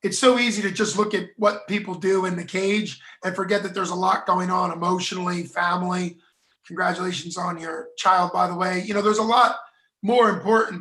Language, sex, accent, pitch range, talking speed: English, male, American, 180-205 Hz, 205 wpm